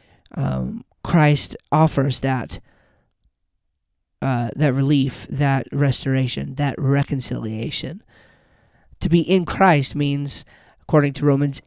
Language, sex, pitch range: English, male, 130-150 Hz